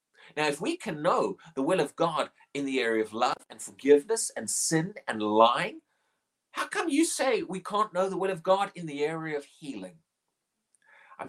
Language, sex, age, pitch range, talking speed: English, male, 30-49, 135-215 Hz, 195 wpm